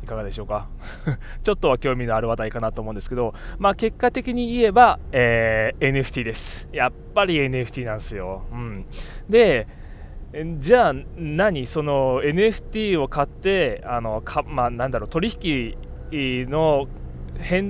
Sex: male